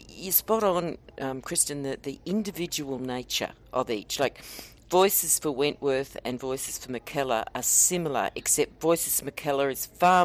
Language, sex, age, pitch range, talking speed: English, female, 50-69, 125-150 Hz, 160 wpm